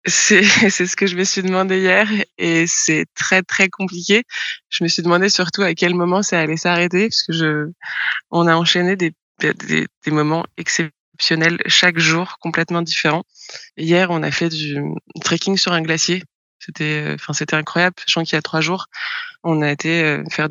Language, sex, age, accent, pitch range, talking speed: French, female, 20-39, French, 155-180 Hz, 185 wpm